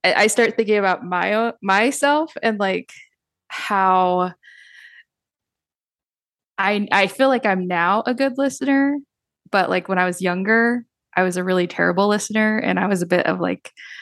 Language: English